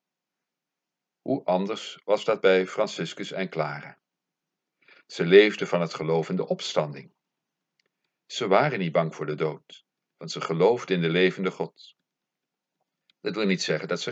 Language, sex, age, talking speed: Dutch, male, 50-69, 155 wpm